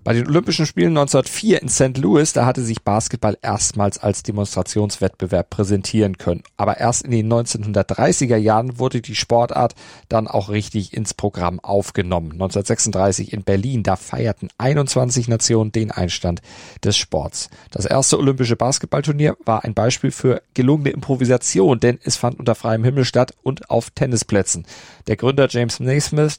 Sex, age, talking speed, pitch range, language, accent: male, 40-59, 150 wpm, 100-130 Hz, German, German